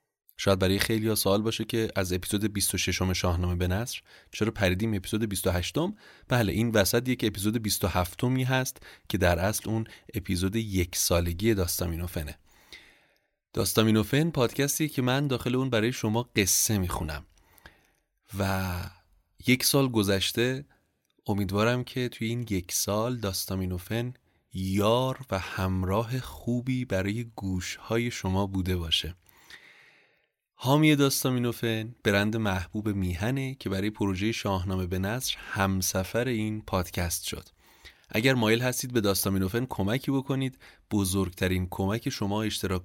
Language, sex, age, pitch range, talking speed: Persian, male, 30-49, 95-120 Hz, 125 wpm